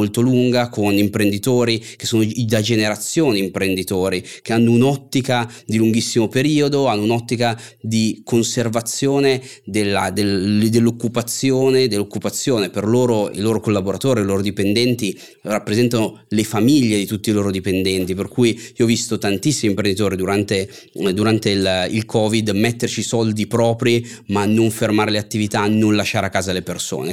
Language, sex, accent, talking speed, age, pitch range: Italian, male, native, 145 wpm, 30-49, 100-120 Hz